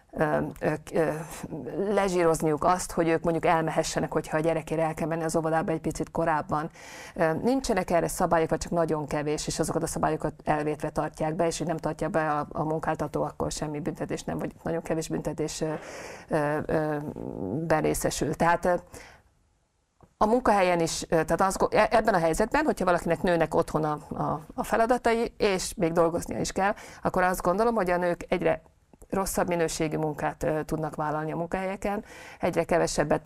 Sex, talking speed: female, 150 wpm